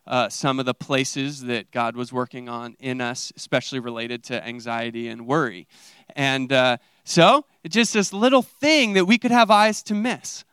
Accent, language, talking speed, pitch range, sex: American, English, 190 wpm, 135-190 Hz, male